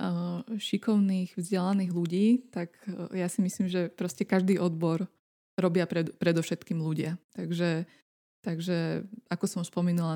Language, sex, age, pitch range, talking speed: Slovak, female, 20-39, 175-200 Hz, 120 wpm